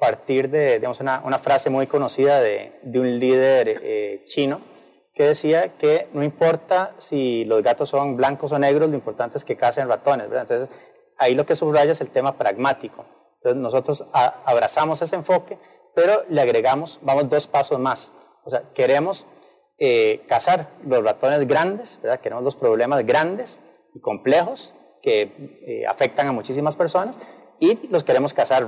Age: 30-49